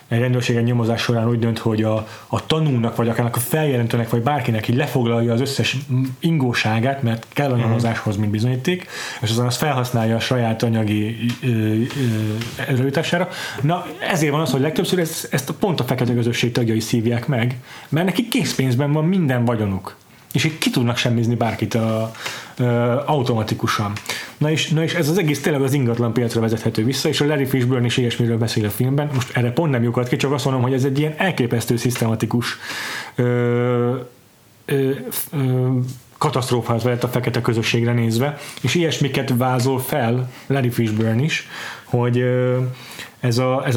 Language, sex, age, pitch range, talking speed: Hungarian, male, 30-49, 115-135 Hz, 155 wpm